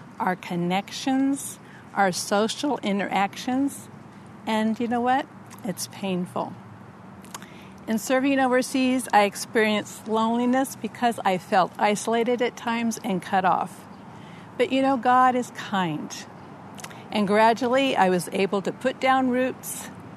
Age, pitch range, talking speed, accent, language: 50-69, 190-245 Hz, 120 wpm, American, English